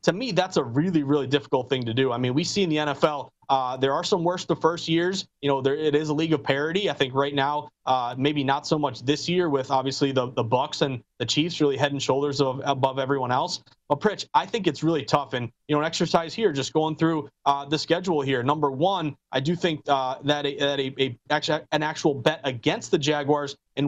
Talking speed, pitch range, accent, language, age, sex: 255 wpm, 140-170 Hz, American, English, 30-49, male